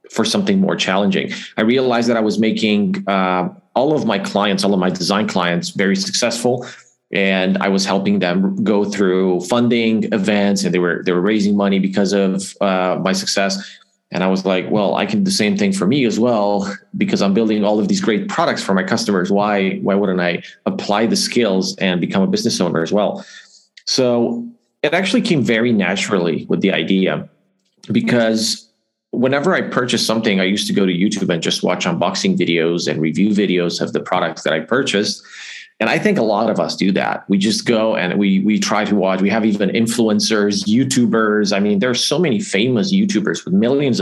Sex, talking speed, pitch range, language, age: male, 205 wpm, 95-120 Hz, English, 30-49